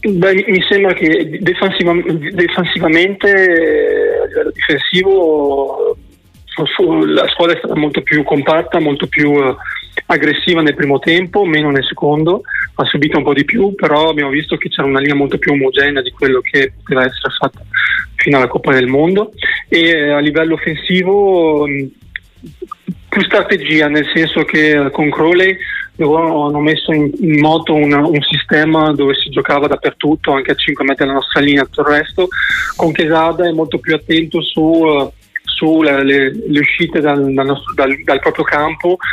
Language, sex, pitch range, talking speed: Italian, male, 145-175 Hz, 150 wpm